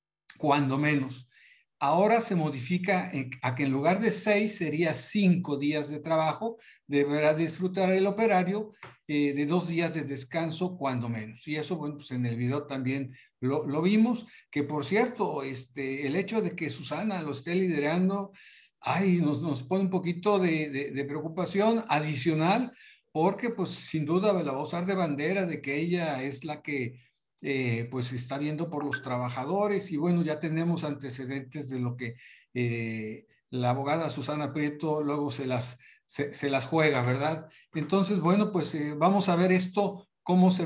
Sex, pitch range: male, 145-195 Hz